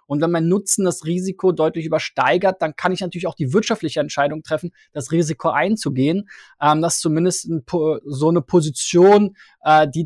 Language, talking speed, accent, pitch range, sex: German, 185 wpm, German, 150-190 Hz, male